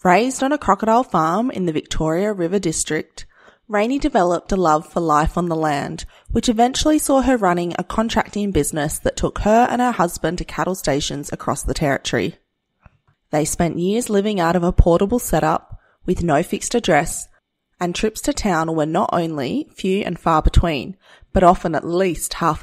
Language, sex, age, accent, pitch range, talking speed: English, female, 20-39, Australian, 160-210 Hz, 180 wpm